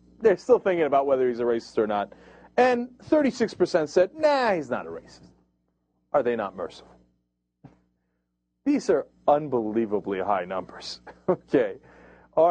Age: 40-59